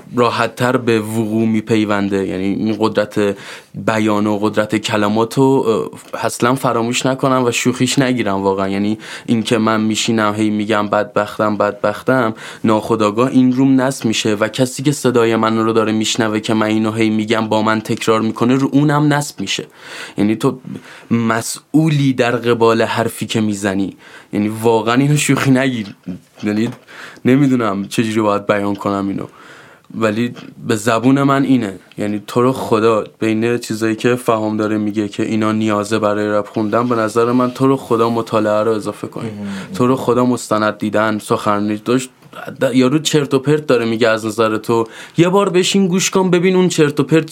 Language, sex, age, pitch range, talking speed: Persian, male, 20-39, 110-135 Hz, 165 wpm